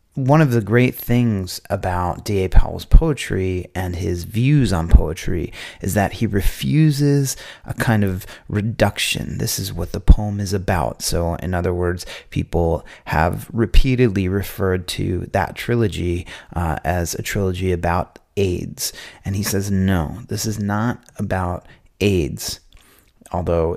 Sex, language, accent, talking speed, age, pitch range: male, English, American, 140 wpm, 30-49, 90-120 Hz